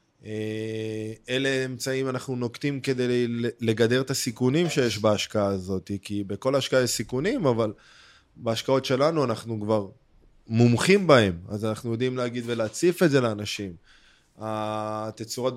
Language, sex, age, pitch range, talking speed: Hebrew, male, 20-39, 110-130 Hz, 125 wpm